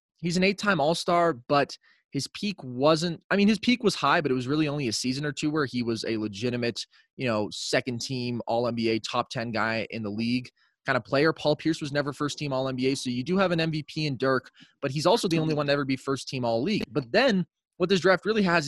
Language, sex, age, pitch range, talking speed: English, male, 20-39, 125-155 Hz, 235 wpm